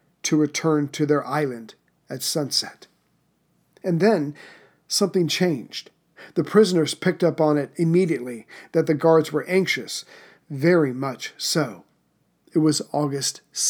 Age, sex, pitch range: 50-69, male, 145-175 Hz